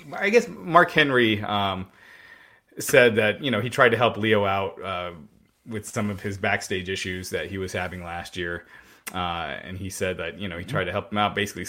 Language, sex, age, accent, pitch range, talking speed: English, male, 30-49, American, 95-115 Hz, 215 wpm